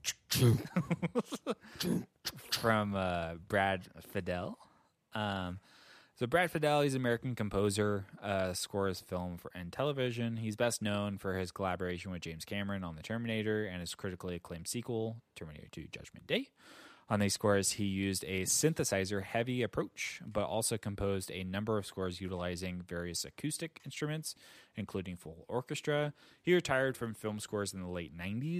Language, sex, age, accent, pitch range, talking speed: English, male, 20-39, American, 95-120 Hz, 145 wpm